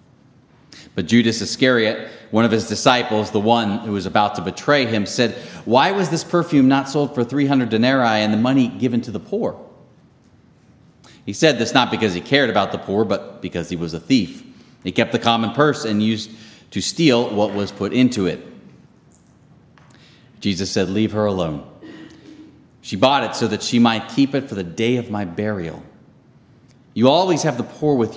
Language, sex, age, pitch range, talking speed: English, male, 30-49, 105-140 Hz, 185 wpm